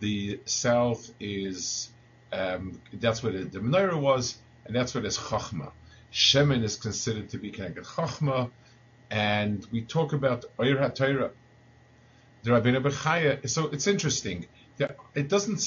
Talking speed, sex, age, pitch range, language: 140 wpm, male, 50-69, 110-130 Hz, English